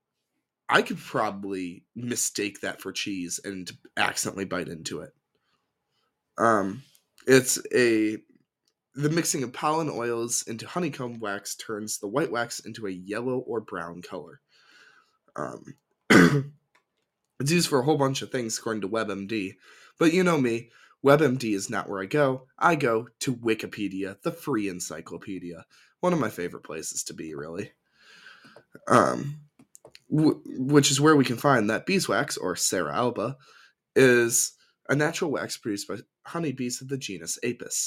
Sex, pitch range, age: male, 100-140 Hz, 20-39